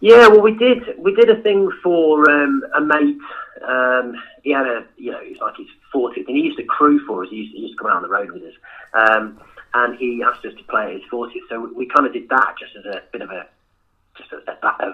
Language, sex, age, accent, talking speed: English, male, 40-59, British, 275 wpm